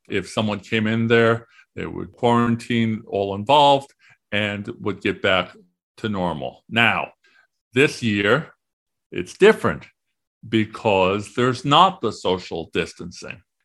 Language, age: English, 50-69